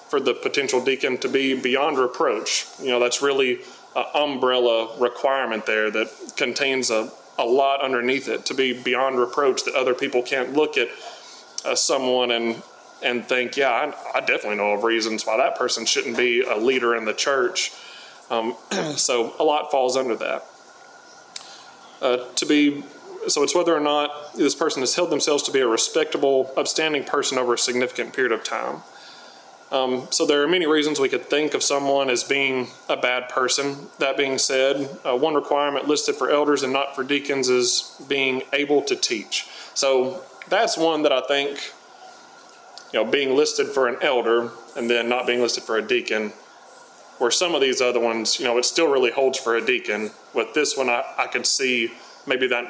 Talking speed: 190 wpm